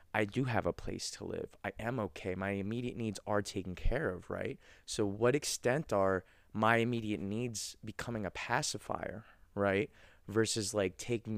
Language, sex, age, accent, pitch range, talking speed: English, male, 20-39, American, 90-110 Hz, 170 wpm